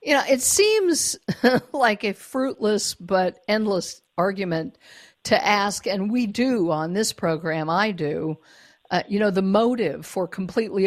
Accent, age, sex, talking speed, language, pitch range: American, 50-69, female, 150 wpm, English, 190-260 Hz